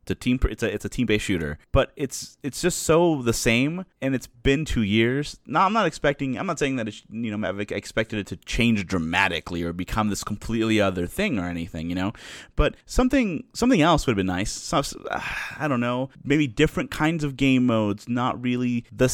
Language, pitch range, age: English, 105-140 Hz, 30-49